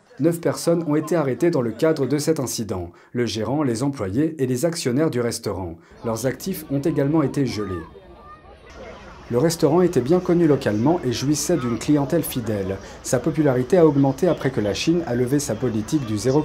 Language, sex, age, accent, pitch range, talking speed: French, male, 40-59, French, 120-165 Hz, 185 wpm